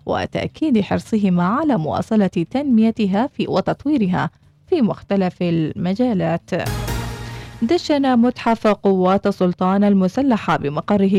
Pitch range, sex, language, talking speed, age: 175-225 Hz, female, Arabic, 85 wpm, 20-39